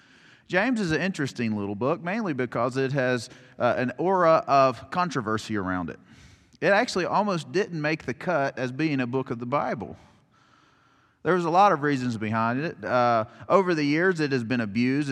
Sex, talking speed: male, 185 wpm